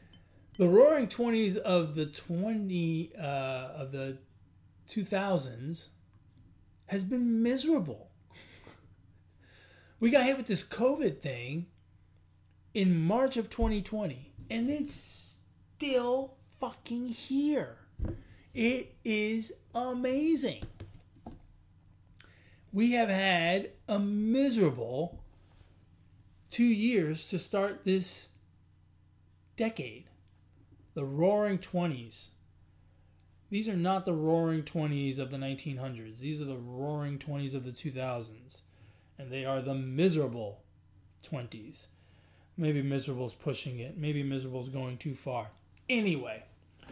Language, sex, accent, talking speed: English, male, American, 105 wpm